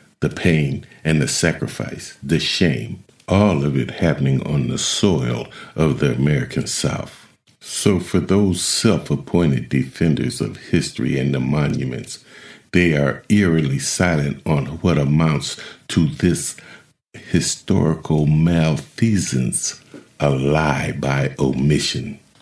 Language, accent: English, American